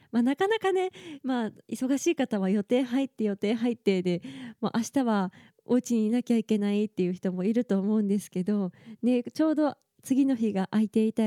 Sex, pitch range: female, 210-275 Hz